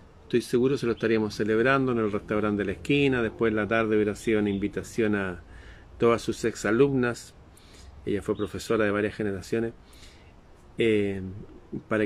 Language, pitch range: Spanish, 95-120 Hz